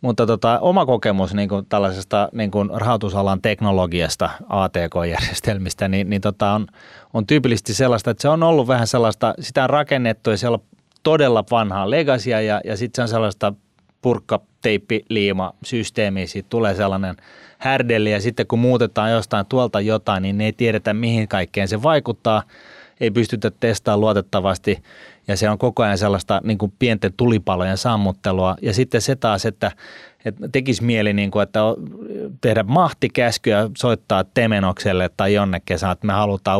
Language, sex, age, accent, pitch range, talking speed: Finnish, male, 30-49, native, 100-120 Hz, 155 wpm